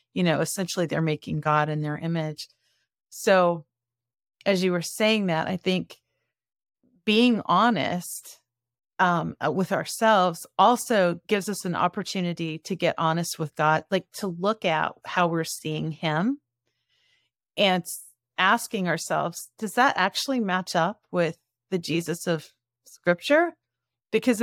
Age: 40-59